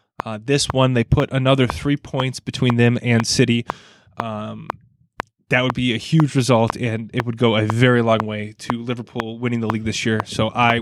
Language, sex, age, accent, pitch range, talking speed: English, male, 20-39, American, 115-140 Hz, 200 wpm